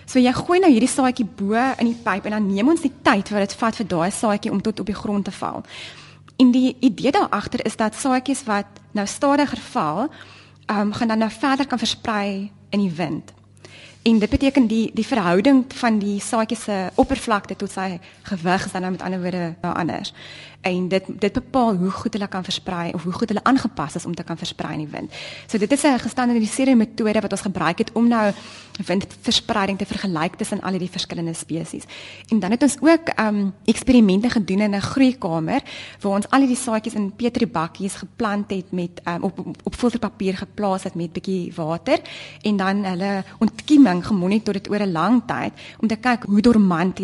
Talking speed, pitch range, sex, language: 200 wpm, 185-235 Hz, female, Dutch